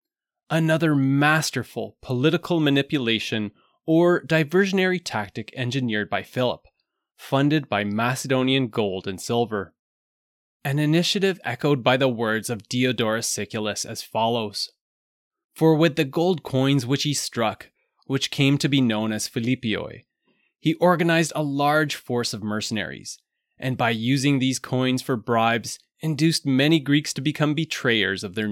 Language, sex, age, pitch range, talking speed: English, male, 20-39, 110-160 Hz, 135 wpm